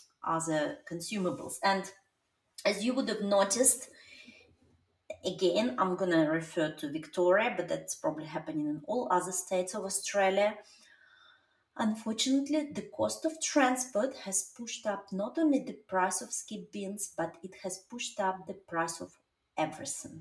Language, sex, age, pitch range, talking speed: English, female, 30-49, 170-230 Hz, 145 wpm